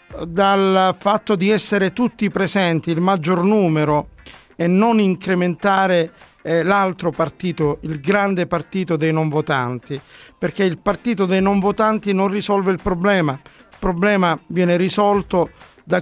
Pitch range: 170-205 Hz